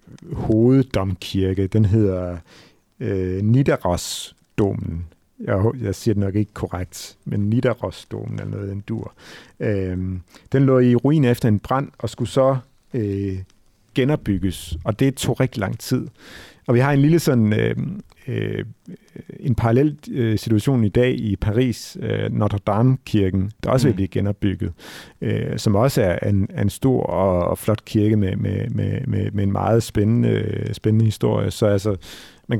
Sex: male